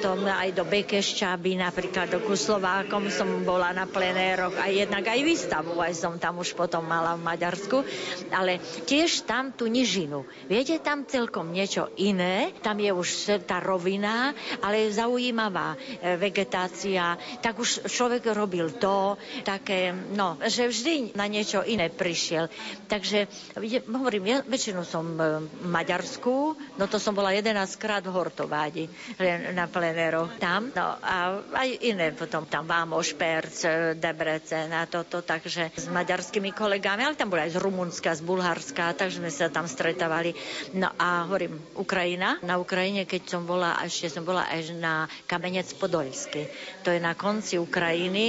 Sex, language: female, Slovak